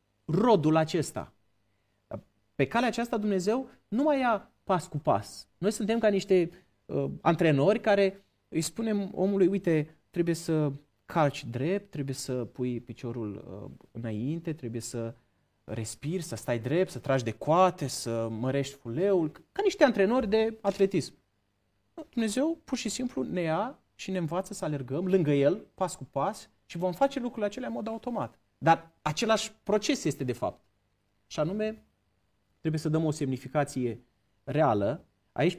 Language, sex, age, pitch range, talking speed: Romanian, male, 30-49, 125-195 Hz, 150 wpm